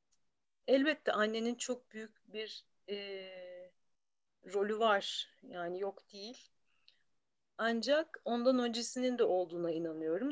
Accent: native